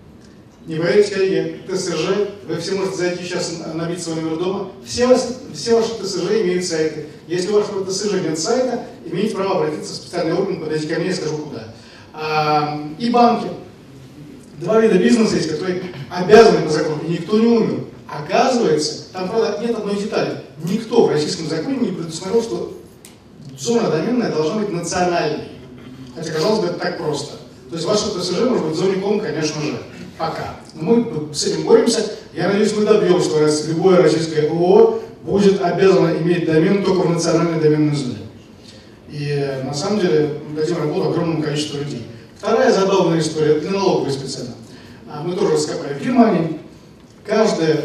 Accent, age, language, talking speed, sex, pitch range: native, 30-49, Russian, 170 wpm, male, 155-205 Hz